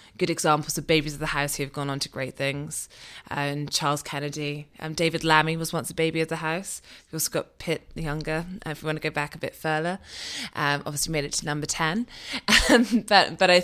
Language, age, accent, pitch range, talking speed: English, 20-39, British, 150-175 Hz, 245 wpm